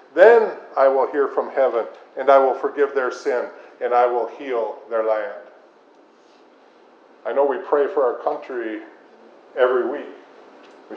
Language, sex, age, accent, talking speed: English, male, 50-69, American, 155 wpm